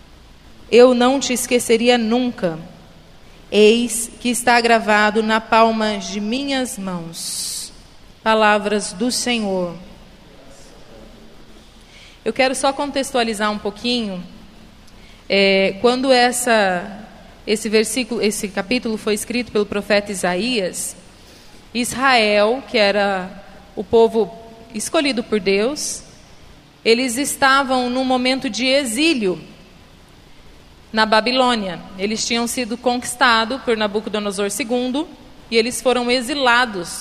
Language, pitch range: Portuguese, 210-260 Hz